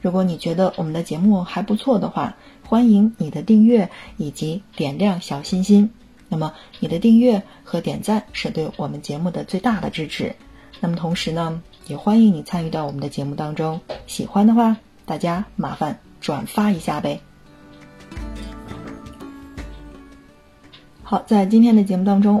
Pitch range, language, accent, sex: 170-220 Hz, Chinese, native, female